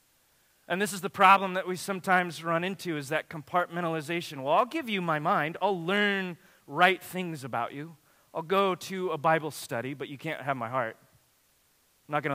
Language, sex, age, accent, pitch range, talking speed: English, male, 30-49, American, 145-195 Hz, 195 wpm